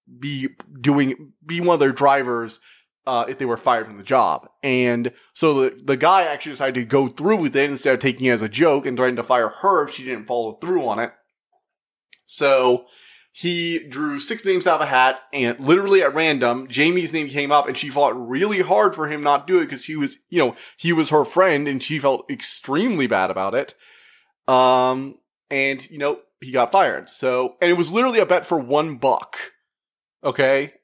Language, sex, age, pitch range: English, male, 20-39, 130-160 Hz